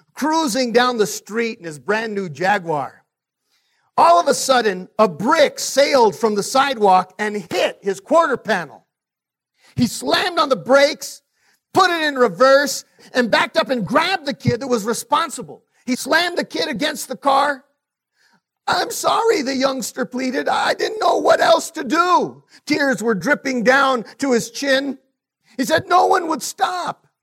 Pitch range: 225-320 Hz